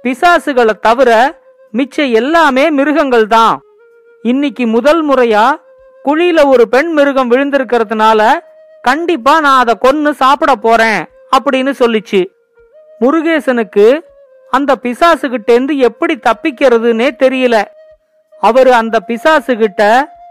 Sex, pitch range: female, 240-310 Hz